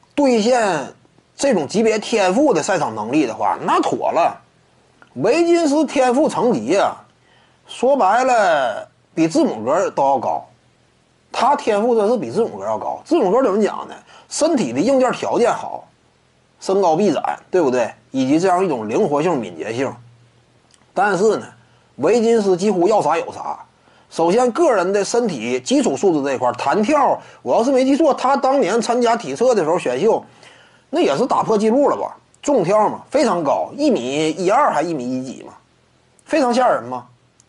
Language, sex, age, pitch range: Chinese, male, 30-49, 210-300 Hz